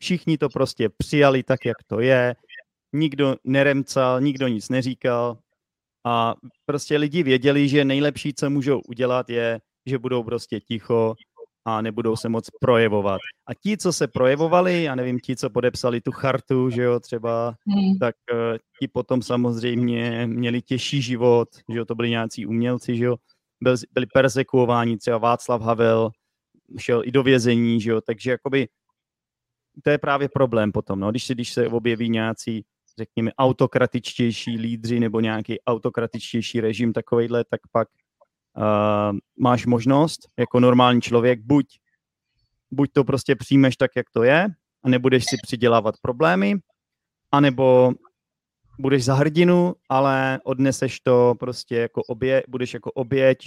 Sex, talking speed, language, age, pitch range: male, 145 wpm, Czech, 30-49, 115-135 Hz